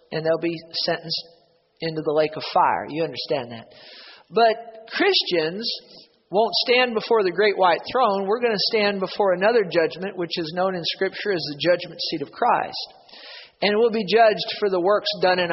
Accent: American